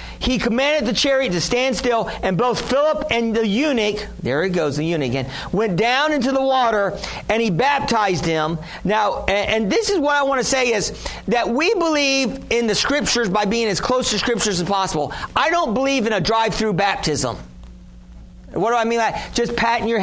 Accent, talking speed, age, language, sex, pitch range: American, 210 wpm, 40-59, English, male, 185-245 Hz